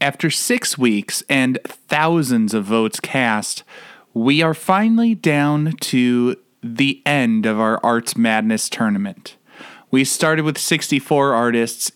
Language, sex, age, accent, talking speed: English, male, 20-39, American, 125 wpm